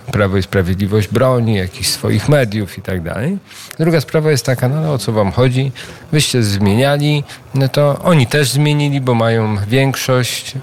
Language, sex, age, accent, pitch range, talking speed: Polish, male, 40-59, native, 100-130 Hz, 170 wpm